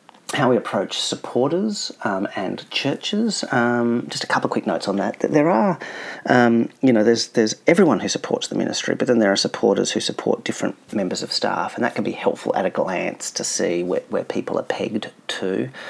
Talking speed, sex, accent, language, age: 210 wpm, male, Australian, English, 40-59